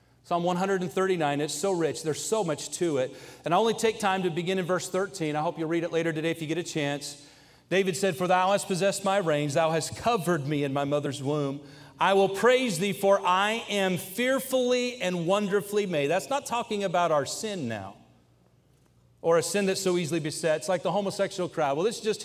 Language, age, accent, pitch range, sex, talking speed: English, 40-59, American, 175-235 Hz, male, 220 wpm